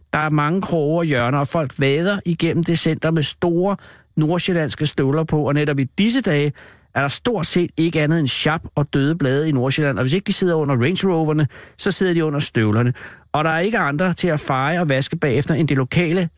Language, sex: Danish, male